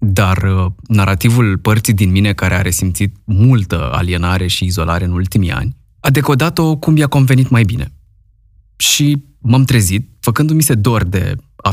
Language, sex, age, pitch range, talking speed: Romanian, male, 20-39, 95-115 Hz, 155 wpm